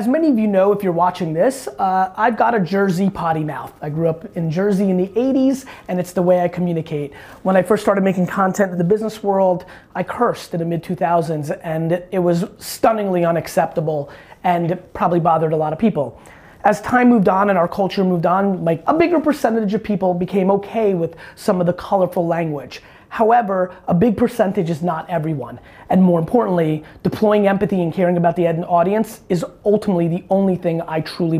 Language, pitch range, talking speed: English, 165-200 Hz, 200 wpm